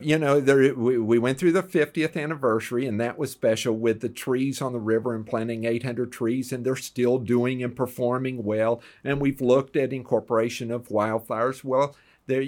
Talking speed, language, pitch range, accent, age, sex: 190 wpm, English, 110-140 Hz, American, 50-69, male